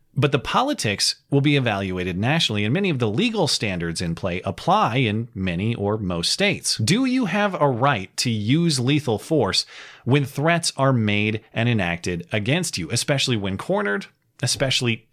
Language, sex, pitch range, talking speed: English, male, 110-160 Hz, 165 wpm